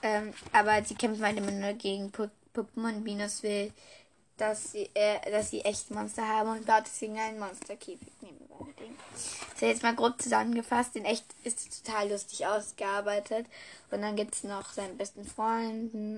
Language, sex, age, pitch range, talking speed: German, female, 10-29, 205-235 Hz, 165 wpm